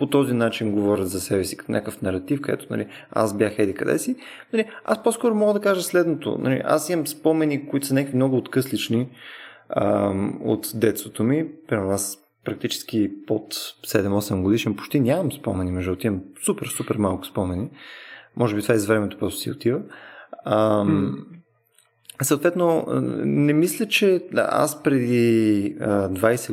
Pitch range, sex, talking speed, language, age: 105-150 Hz, male, 150 wpm, Bulgarian, 20-39